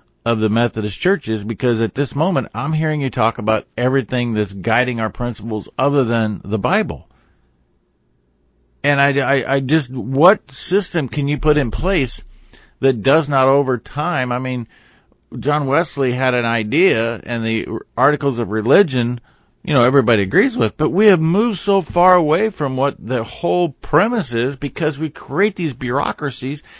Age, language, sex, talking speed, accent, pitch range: 50-69, English, male, 165 wpm, American, 115-160 Hz